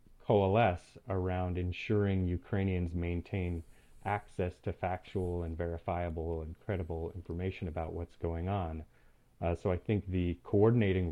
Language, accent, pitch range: Ukrainian, American, 85-95 Hz